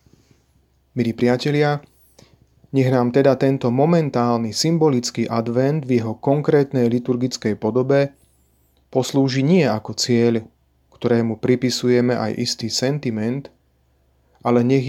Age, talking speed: 30-49, 100 wpm